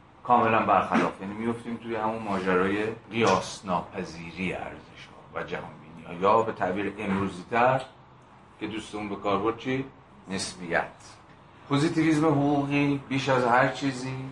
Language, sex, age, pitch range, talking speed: Persian, male, 40-59, 100-125 Hz, 115 wpm